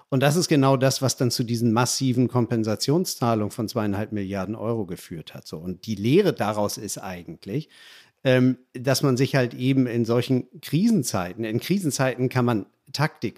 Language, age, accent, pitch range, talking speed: German, 50-69, German, 110-140 Hz, 170 wpm